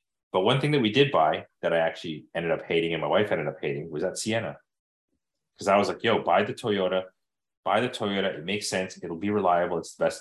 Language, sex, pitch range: English, male, 80-95 Hz